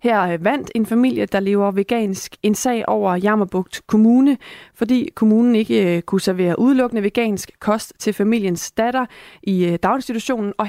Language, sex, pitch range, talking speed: Danish, female, 185-225 Hz, 145 wpm